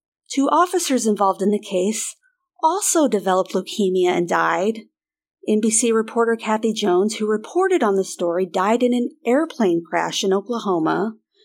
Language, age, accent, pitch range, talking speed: English, 40-59, American, 195-270 Hz, 140 wpm